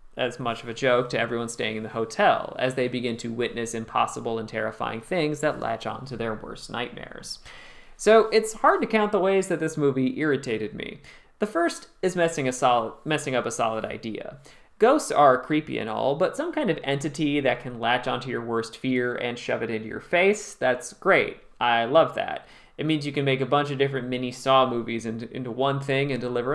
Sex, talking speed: male, 215 wpm